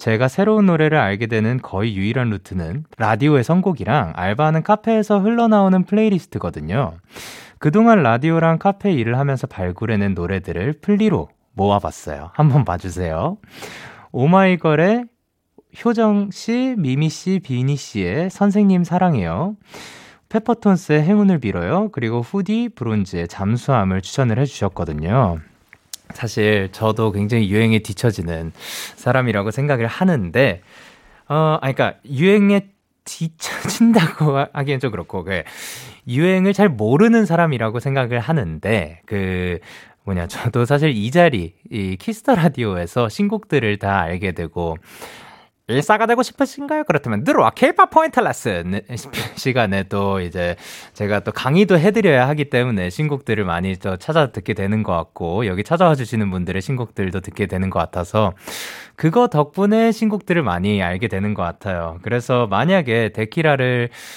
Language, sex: Korean, male